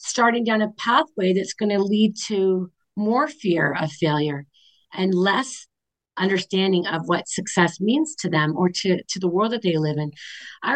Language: English